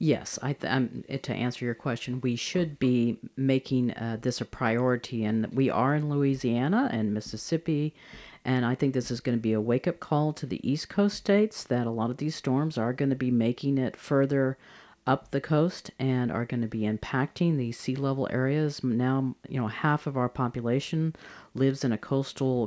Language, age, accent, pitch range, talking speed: English, 40-59, American, 120-140 Hz, 200 wpm